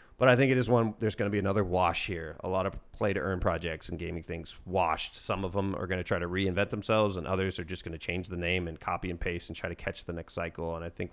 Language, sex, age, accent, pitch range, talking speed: English, male, 30-49, American, 90-110 Hz, 305 wpm